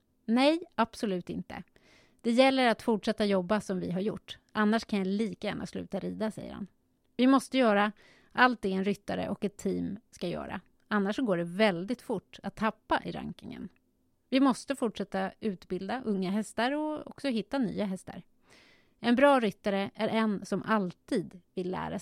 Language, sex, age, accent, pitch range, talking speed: Swedish, female, 30-49, native, 200-245 Hz, 170 wpm